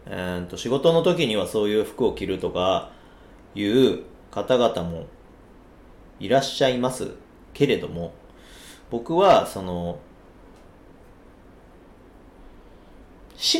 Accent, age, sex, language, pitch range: native, 40-59, male, Japanese, 90-130 Hz